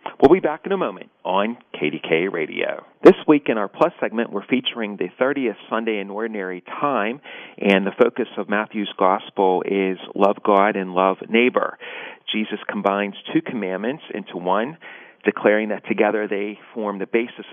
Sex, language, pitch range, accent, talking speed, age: male, English, 95-110 Hz, American, 165 wpm, 40-59